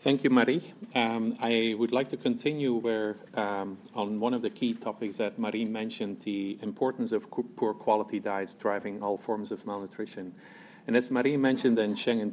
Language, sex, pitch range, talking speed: English, male, 105-125 Hz, 185 wpm